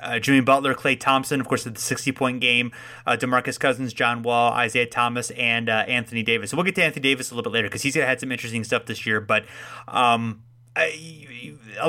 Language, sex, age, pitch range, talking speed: English, male, 30-49, 115-135 Hz, 205 wpm